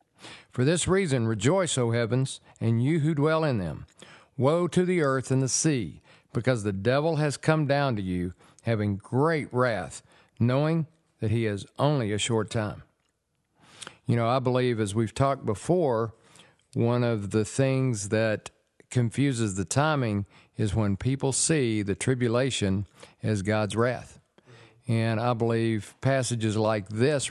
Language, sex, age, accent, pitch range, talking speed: English, male, 50-69, American, 105-130 Hz, 150 wpm